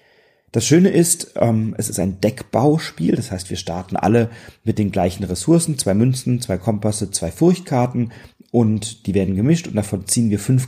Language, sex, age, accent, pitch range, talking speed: German, male, 40-59, German, 100-120 Hz, 175 wpm